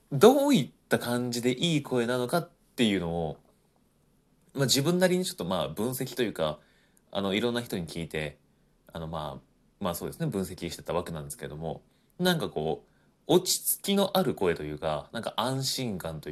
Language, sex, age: Japanese, male, 30-49